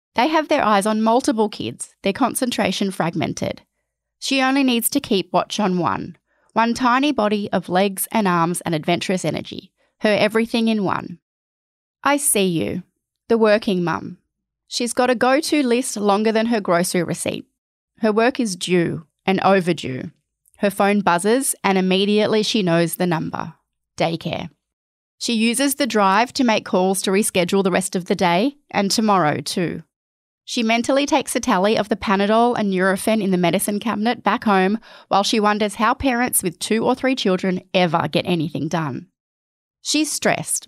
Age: 20-39